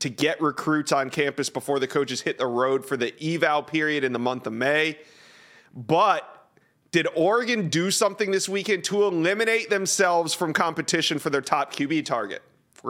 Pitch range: 140-185 Hz